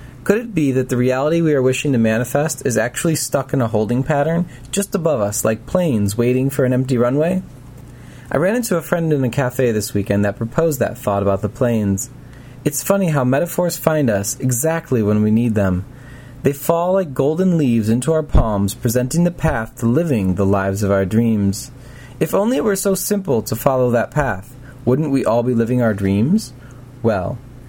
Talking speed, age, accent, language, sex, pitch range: 200 wpm, 30-49, American, English, male, 115-155 Hz